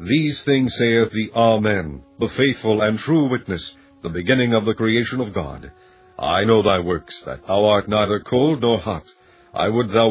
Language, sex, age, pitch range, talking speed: English, male, 50-69, 95-125 Hz, 185 wpm